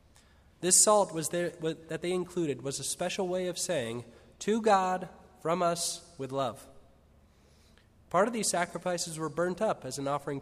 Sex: male